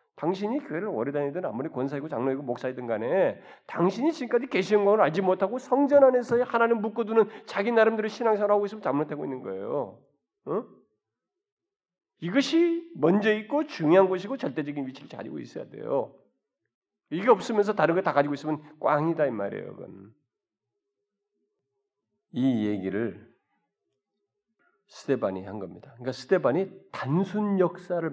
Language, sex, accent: Korean, male, native